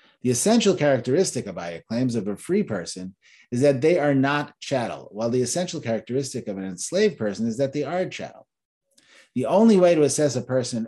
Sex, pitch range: male, 110-150 Hz